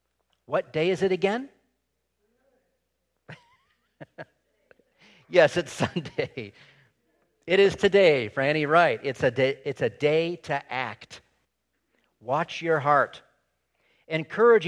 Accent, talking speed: American, 95 wpm